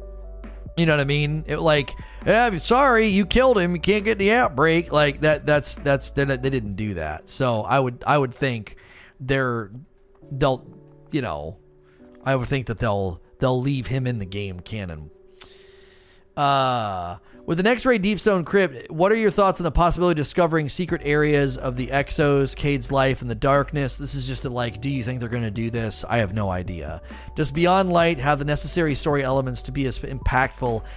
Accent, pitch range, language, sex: American, 120-155 Hz, English, male